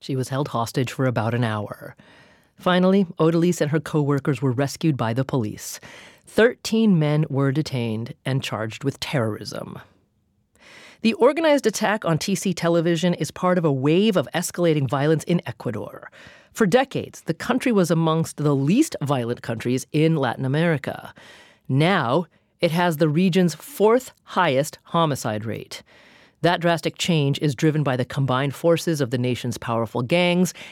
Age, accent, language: 40-59, American, English